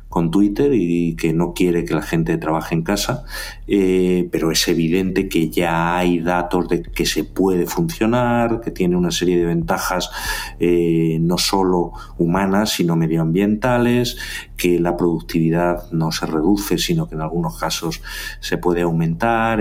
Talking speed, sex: 155 wpm, male